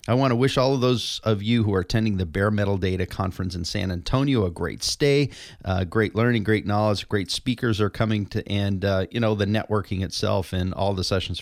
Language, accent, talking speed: English, American, 230 wpm